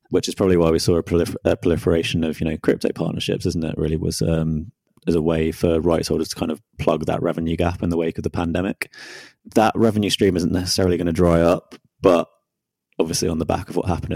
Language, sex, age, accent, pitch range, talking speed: English, male, 20-39, British, 80-85 Hz, 235 wpm